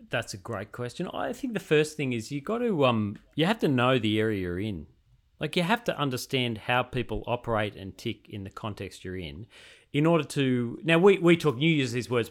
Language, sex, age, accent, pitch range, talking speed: English, male, 40-59, Australian, 115-145 Hz, 235 wpm